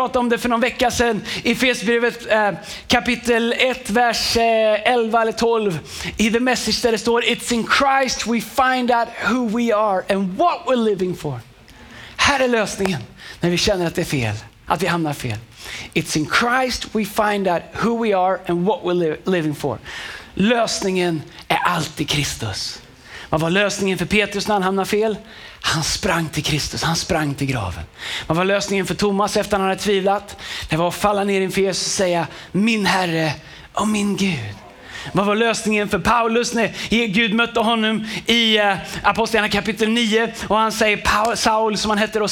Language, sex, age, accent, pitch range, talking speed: Swedish, male, 30-49, native, 165-230 Hz, 190 wpm